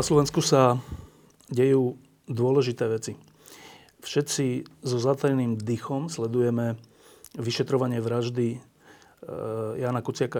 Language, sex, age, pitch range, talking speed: Slovak, male, 40-59, 115-135 Hz, 85 wpm